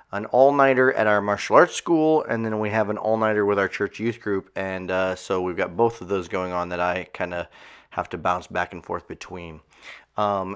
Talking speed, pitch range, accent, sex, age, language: 225 wpm, 100-135 Hz, American, male, 30-49, English